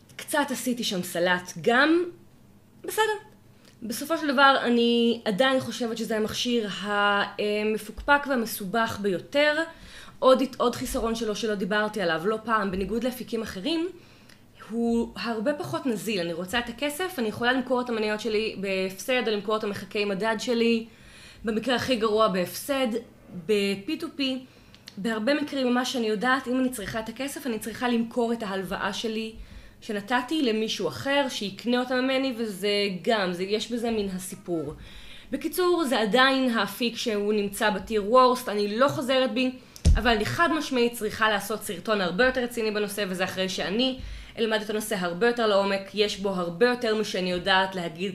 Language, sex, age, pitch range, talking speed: Hebrew, female, 20-39, 200-250 Hz, 155 wpm